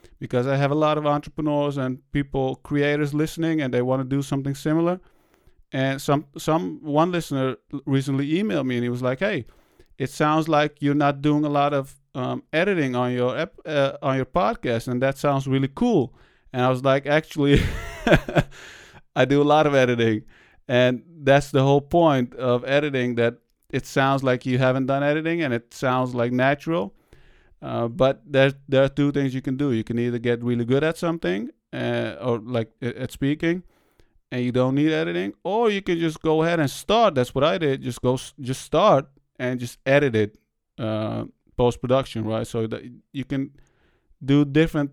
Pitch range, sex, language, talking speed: 125-150 Hz, male, English, 190 wpm